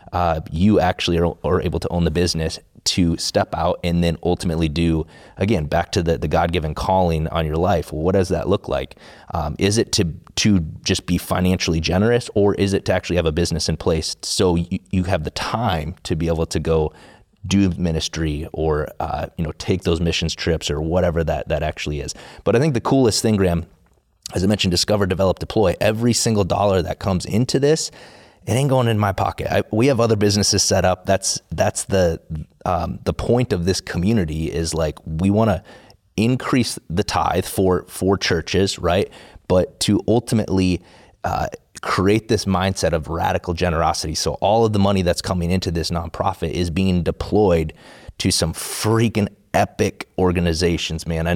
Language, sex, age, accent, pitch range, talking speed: English, male, 30-49, American, 85-100 Hz, 190 wpm